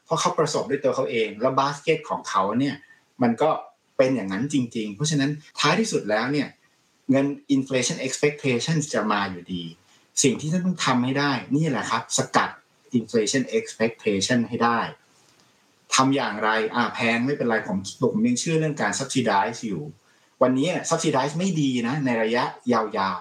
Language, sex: Thai, male